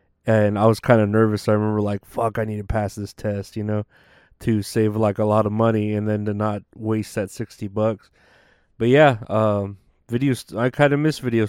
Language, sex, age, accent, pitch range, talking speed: English, male, 20-39, American, 105-130 Hz, 220 wpm